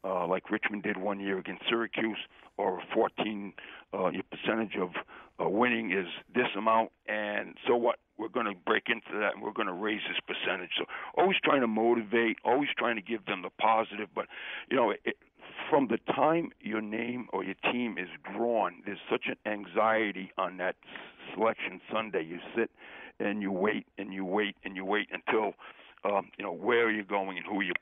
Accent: American